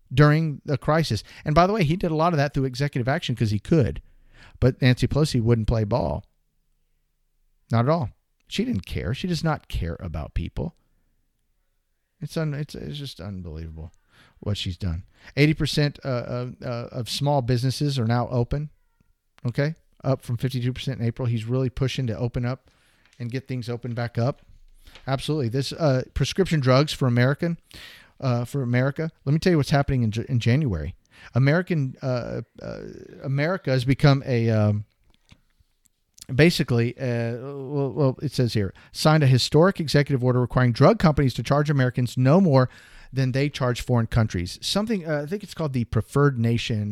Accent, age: American, 40-59